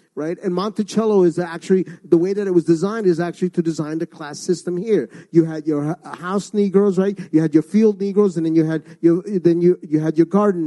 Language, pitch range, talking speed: English, 160-200 Hz, 230 wpm